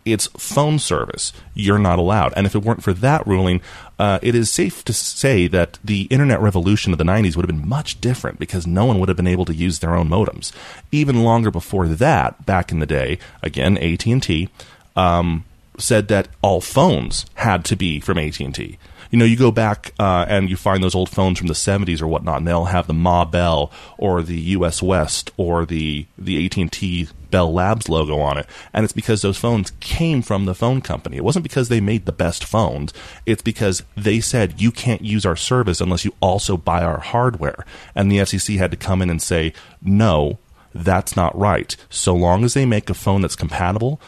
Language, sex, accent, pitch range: English, male, American, 85-110 Hz